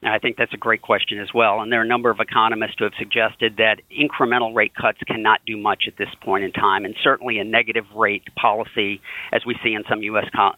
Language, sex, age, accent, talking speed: English, male, 50-69, American, 240 wpm